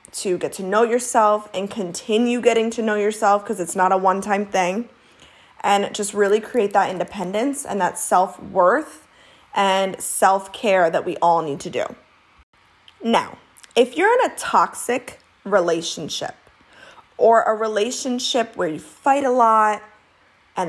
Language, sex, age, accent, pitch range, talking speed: English, female, 20-39, American, 185-225 Hz, 145 wpm